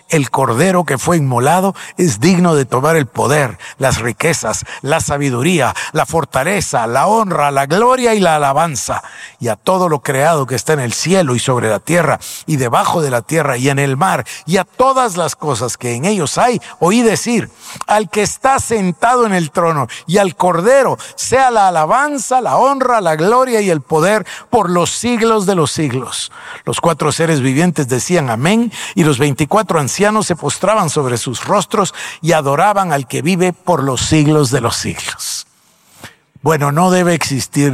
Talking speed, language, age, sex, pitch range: 180 wpm, Spanish, 50-69, male, 130-185 Hz